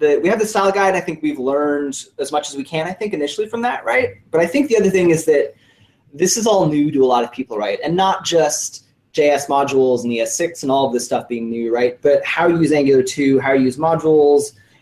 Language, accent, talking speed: English, American, 260 wpm